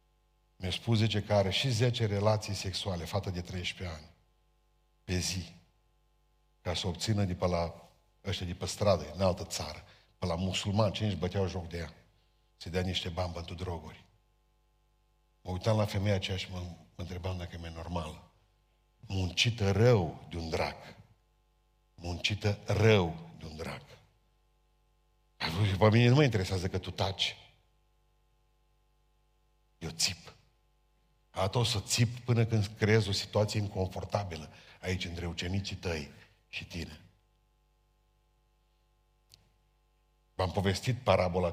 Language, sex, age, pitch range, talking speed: Romanian, male, 50-69, 90-110 Hz, 135 wpm